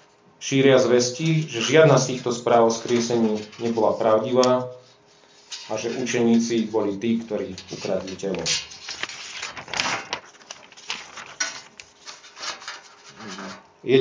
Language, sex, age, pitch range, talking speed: Slovak, male, 40-59, 110-130 Hz, 85 wpm